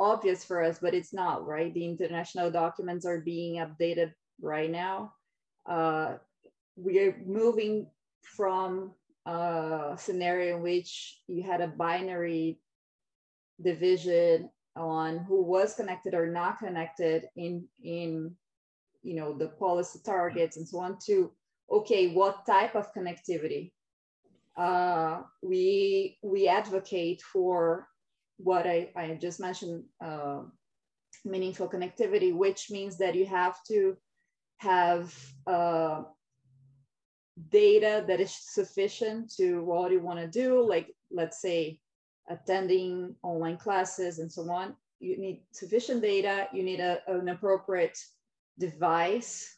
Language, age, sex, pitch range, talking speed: English, 20-39, female, 170-200 Hz, 120 wpm